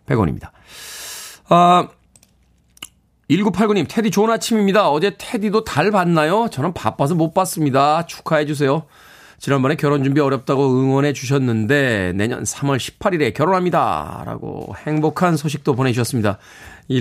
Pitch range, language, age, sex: 130-180 Hz, Korean, 40-59, male